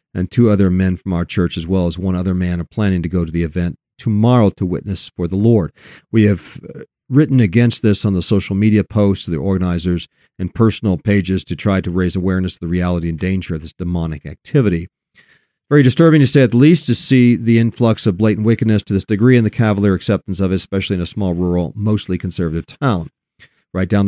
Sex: male